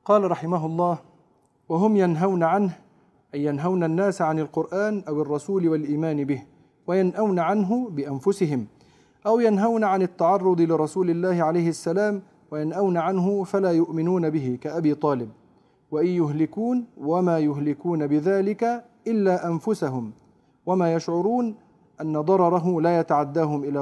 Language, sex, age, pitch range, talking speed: Arabic, male, 40-59, 155-200 Hz, 120 wpm